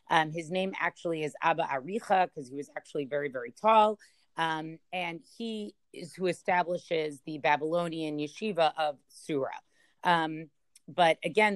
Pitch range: 155-195 Hz